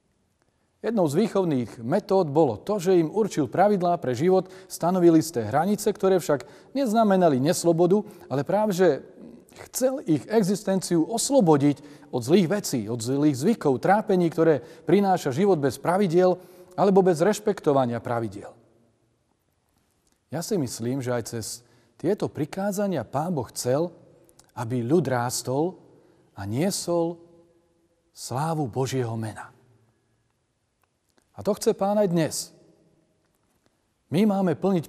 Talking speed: 120 wpm